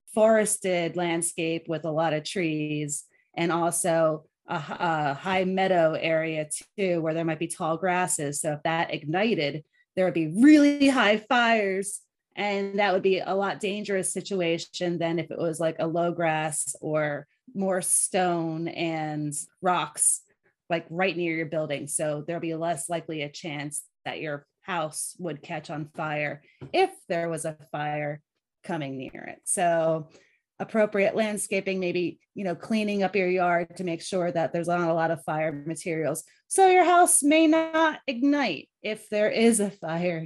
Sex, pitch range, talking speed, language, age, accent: female, 160-215 Hz, 165 wpm, English, 30-49, American